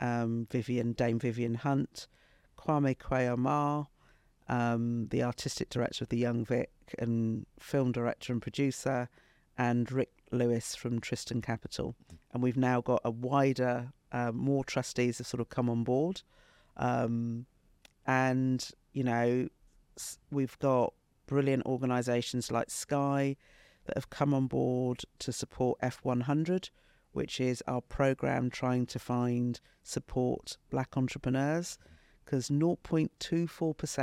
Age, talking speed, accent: 50-69, 125 wpm, British